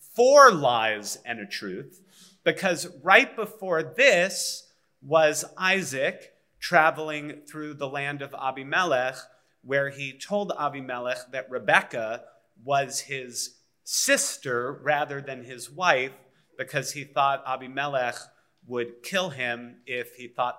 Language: English